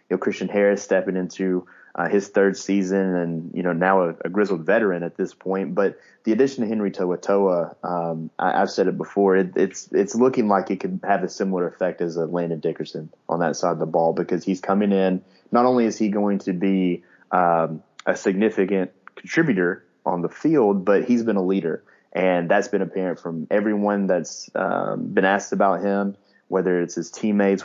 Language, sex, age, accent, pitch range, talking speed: English, male, 20-39, American, 90-100 Hz, 200 wpm